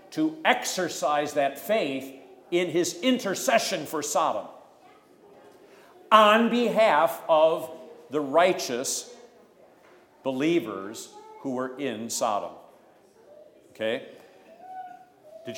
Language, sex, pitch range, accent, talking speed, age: English, male, 125-175 Hz, American, 80 wpm, 50-69